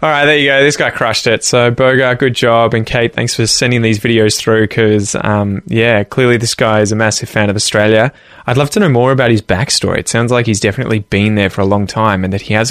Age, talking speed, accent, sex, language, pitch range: 20-39, 260 wpm, Australian, male, English, 110-135 Hz